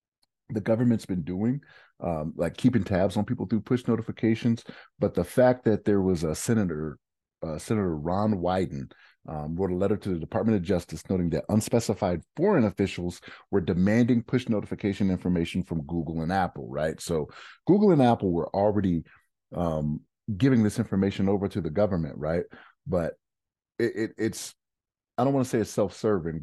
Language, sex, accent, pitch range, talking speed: English, male, American, 85-115 Hz, 170 wpm